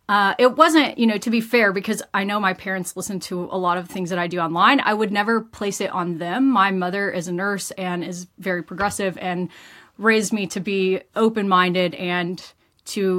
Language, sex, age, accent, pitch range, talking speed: English, female, 30-49, American, 185-215 Hz, 215 wpm